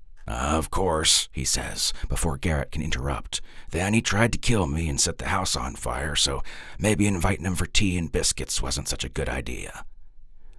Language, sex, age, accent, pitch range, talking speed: English, male, 40-59, American, 75-100 Hz, 185 wpm